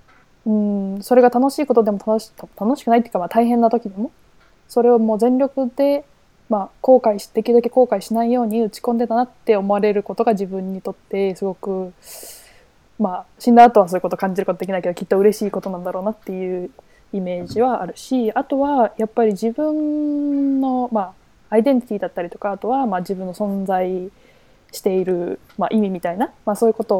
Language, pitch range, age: Japanese, 195-245 Hz, 20-39